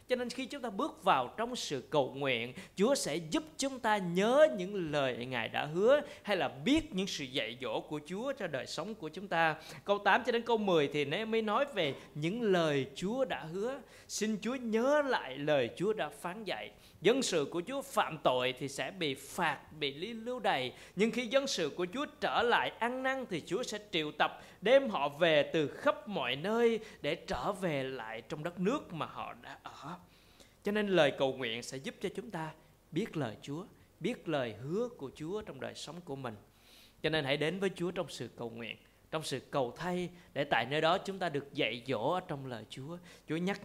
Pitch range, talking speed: 145-225 Hz, 220 wpm